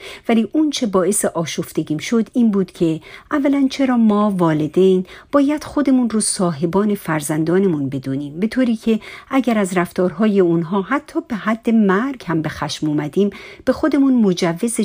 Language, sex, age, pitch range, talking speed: Persian, female, 50-69, 175-245 Hz, 145 wpm